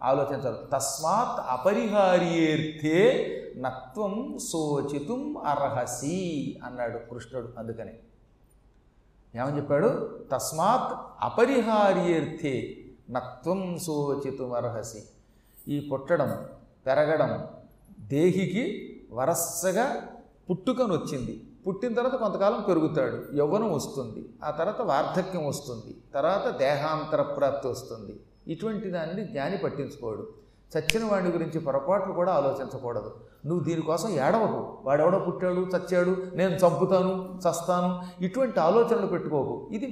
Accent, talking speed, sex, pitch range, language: native, 85 wpm, male, 140-200 Hz, Telugu